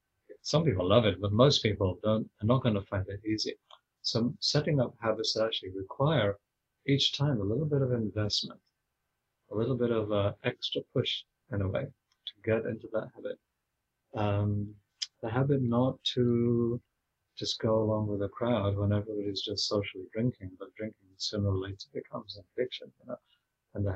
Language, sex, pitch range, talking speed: English, male, 105-125 Hz, 180 wpm